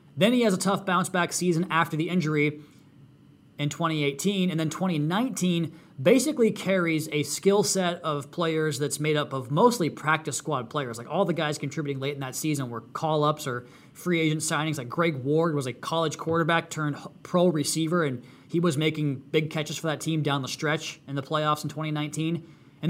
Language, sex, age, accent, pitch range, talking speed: English, male, 20-39, American, 140-165 Hz, 195 wpm